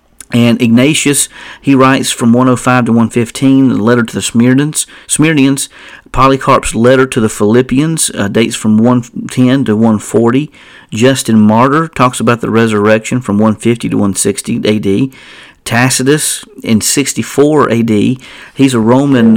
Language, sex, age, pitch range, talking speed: English, male, 50-69, 110-130 Hz, 135 wpm